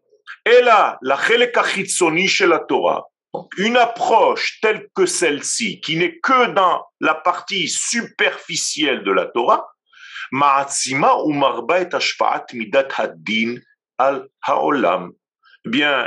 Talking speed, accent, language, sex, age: 120 wpm, French, French, male, 50-69